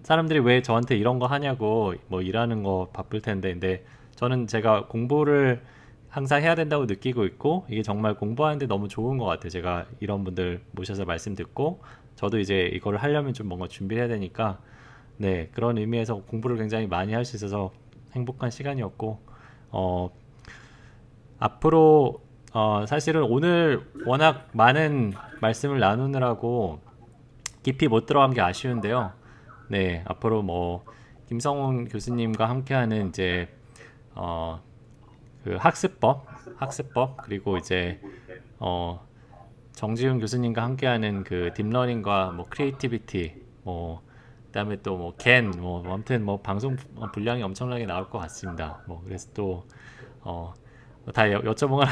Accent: native